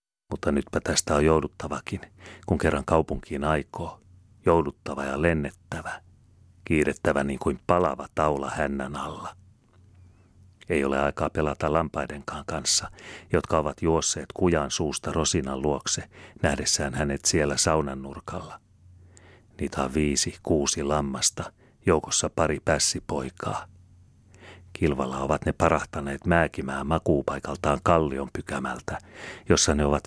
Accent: native